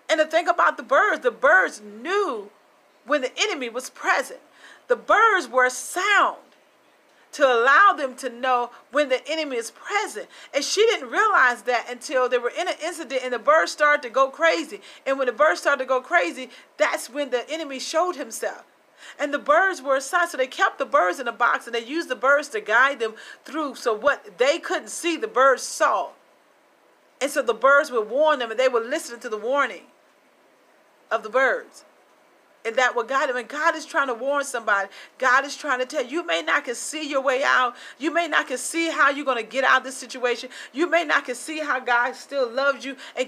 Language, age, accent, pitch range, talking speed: English, 40-59, American, 245-315 Hz, 220 wpm